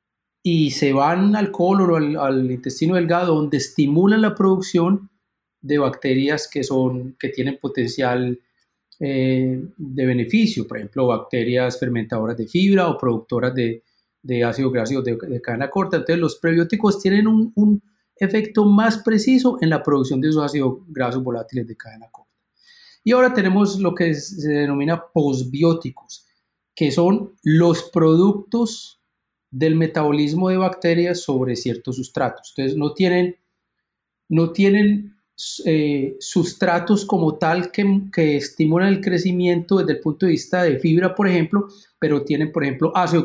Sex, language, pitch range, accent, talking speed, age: male, Spanish, 130-185 Hz, Colombian, 150 wpm, 30-49